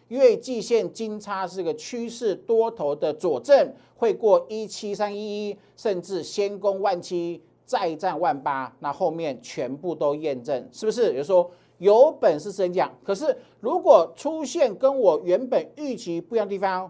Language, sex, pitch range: Chinese, male, 170-235 Hz